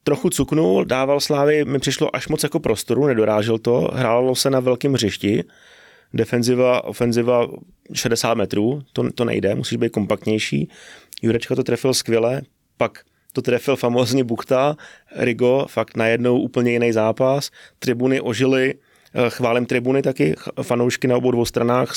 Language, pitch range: Czech, 120-135 Hz